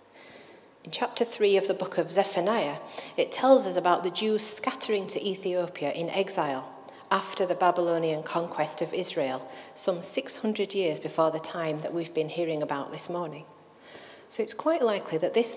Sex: female